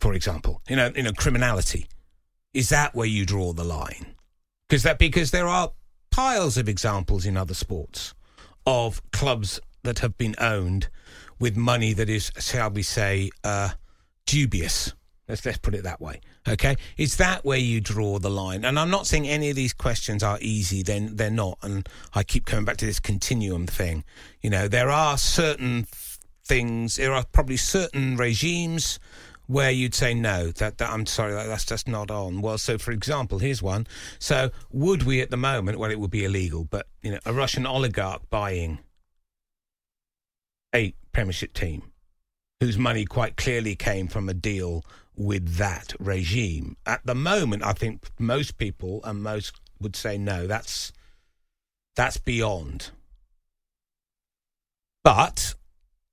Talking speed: 165 wpm